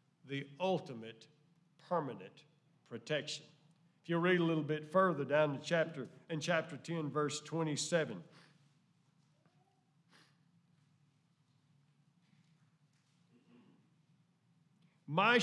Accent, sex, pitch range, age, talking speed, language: American, male, 155-195 Hz, 50-69, 75 wpm, English